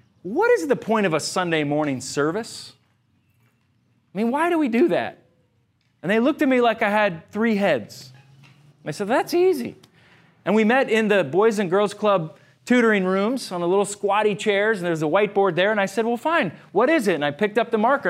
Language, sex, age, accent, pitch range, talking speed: English, male, 30-49, American, 185-255 Hz, 215 wpm